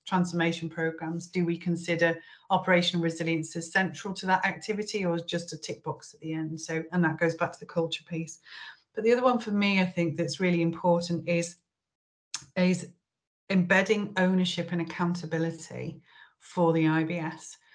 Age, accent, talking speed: 40-59, British, 165 wpm